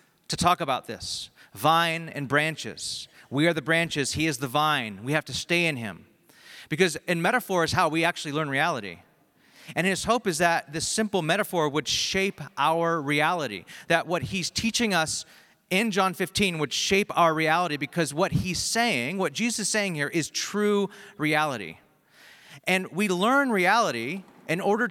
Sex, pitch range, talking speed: male, 155-210 Hz, 175 wpm